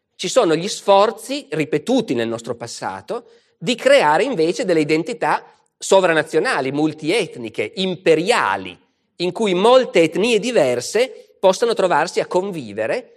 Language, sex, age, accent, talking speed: Italian, male, 40-59, native, 115 wpm